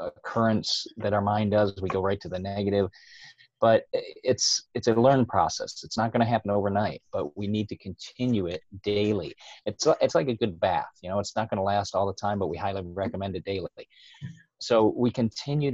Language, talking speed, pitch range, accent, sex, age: English, 210 wpm, 100-115 Hz, American, male, 30-49